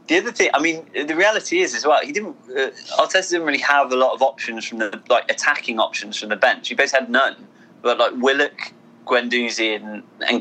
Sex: male